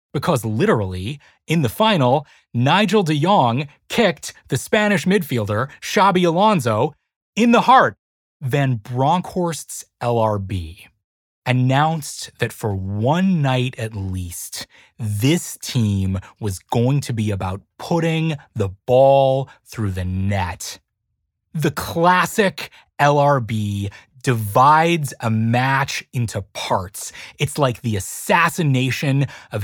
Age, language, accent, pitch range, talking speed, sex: 30-49, English, American, 105-155 Hz, 105 wpm, male